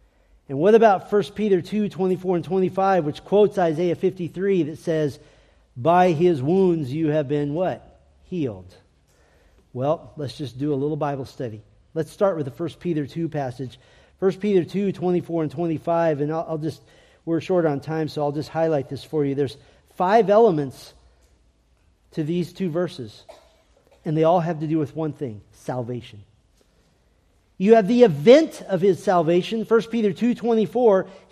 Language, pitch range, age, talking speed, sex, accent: English, 155-225 Hz, 40-59, 165 wpm, male, American